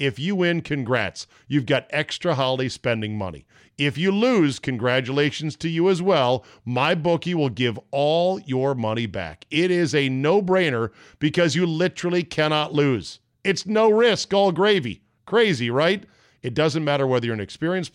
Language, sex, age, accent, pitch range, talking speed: English, male, 50-69, American, 120-155 Hz, 165 wpm